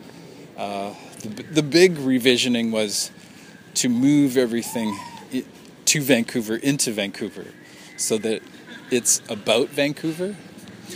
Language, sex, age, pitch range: English, male, 40-59, 110-160 Hz